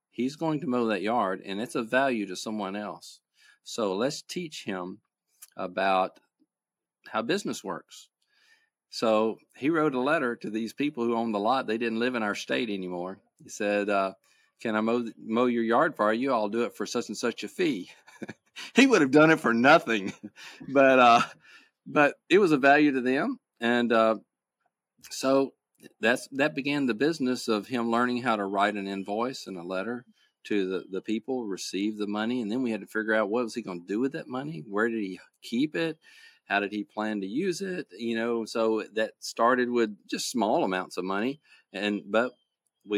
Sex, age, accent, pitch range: male, 40-59, American, 105-125 Hz